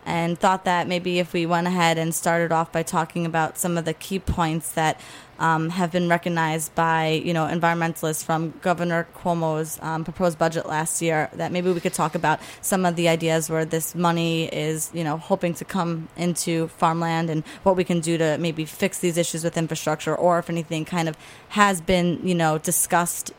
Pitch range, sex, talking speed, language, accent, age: 160-180 Hz, female, 205 wpm, English, American, 20-39